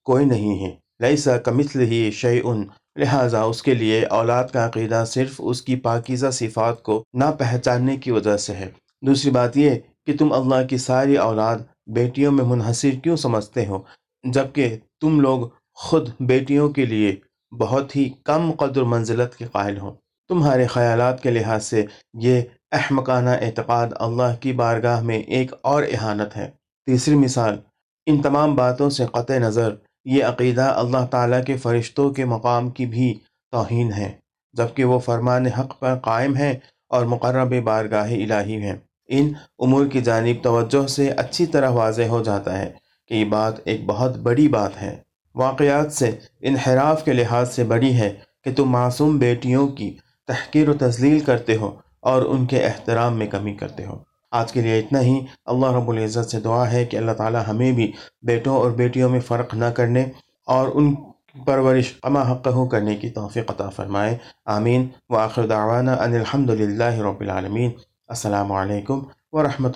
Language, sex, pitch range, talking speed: Urdu, male, 115-130 Hz, 165 wpm